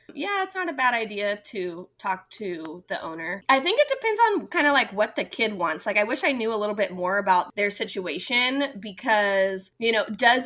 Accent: American